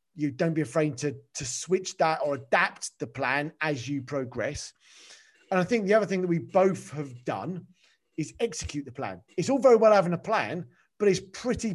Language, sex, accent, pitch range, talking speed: English, male, British, 155-220 Hz, 205 wpm